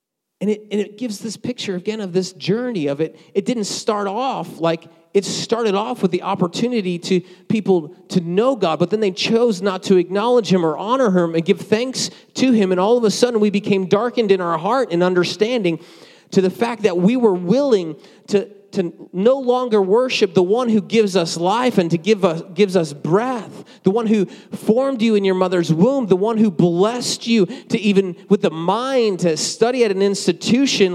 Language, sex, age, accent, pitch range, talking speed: English, male, 30-49, American, 180-230 Hz, 205 wpm